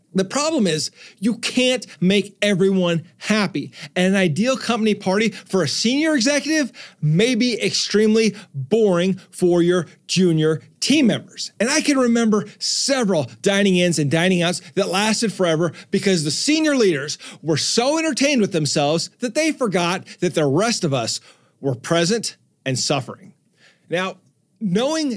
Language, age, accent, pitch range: English, 40-59, American, 175-225 Hz